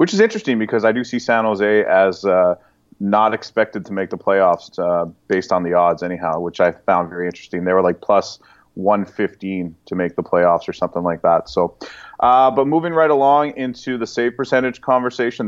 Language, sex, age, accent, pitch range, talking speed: English, male, 30-49, American, 100-120 Hz, 205 wpm